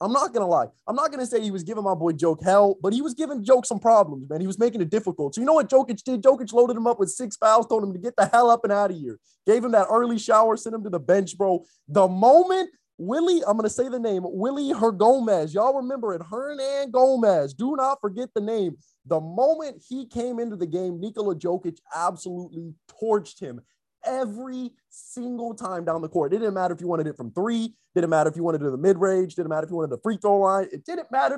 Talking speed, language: 260 wpm, English